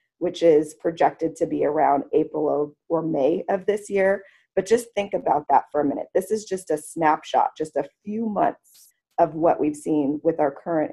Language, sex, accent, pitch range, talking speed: English, female, American, 155-195 Hz, 205 wpm